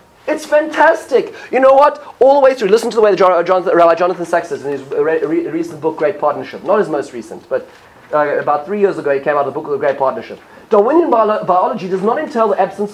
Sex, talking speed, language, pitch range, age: male, 230 wpm, English, 140-235 Hz, 30-49